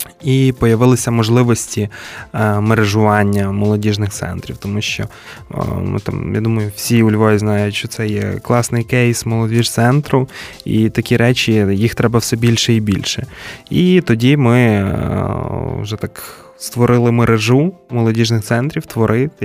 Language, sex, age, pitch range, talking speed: Ukrainian, male, 20-39, 110-125 Hz, 125 wpm